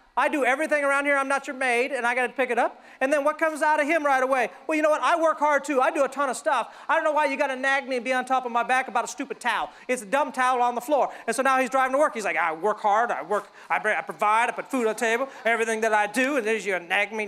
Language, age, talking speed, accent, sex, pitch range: English, 40-59, 335 wpm, American, male, 235-310 Hz